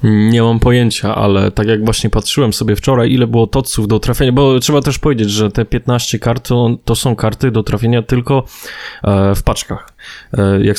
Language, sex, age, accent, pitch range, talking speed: Polish, male, 20-39, native, 105-120 Hz, 185 wpm